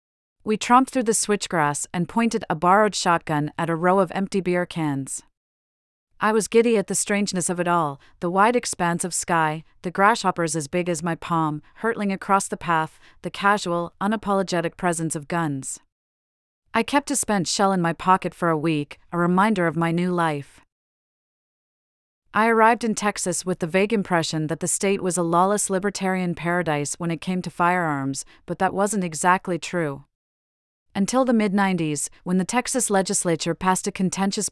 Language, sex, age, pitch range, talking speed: English, female, 40-59, 160-195 Hz, 175 wpm